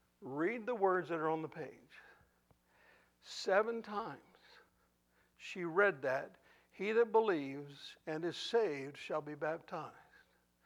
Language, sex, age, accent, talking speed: English, male, 60-79, American, 125 wpm